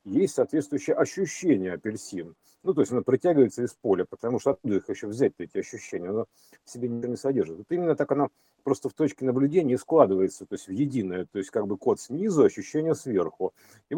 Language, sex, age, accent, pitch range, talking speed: Russian, male, 50-69, native, 110-160 Hz, 200 wpm